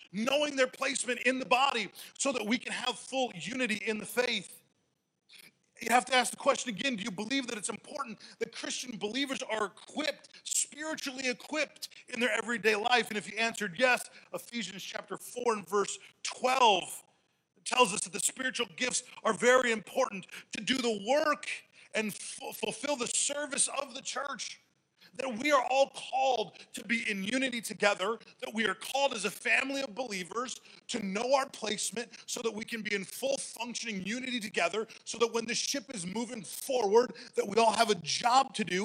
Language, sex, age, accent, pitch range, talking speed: English, male, 40-59, American, 210-260 Hz, 185 wpm